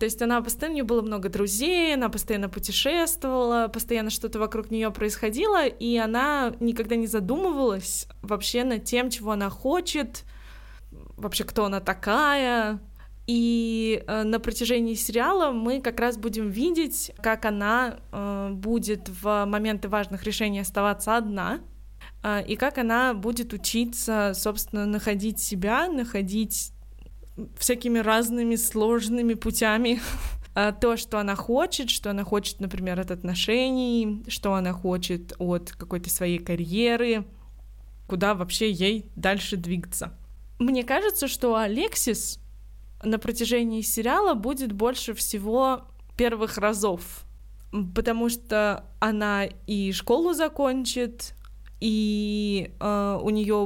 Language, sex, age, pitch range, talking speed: Russian, female, 20-39, 200-240 Hz, 120 wpm